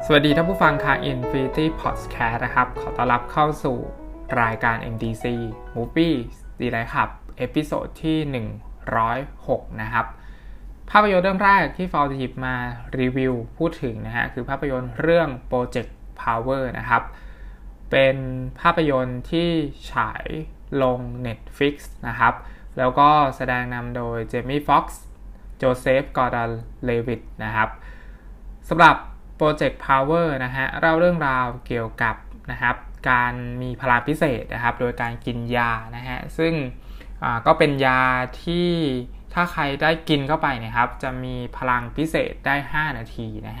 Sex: male